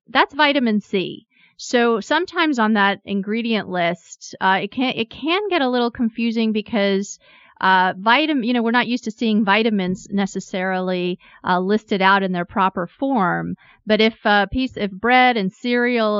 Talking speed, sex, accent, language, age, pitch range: 170 wpm, female, American, English, 30-49, 185-240 Hz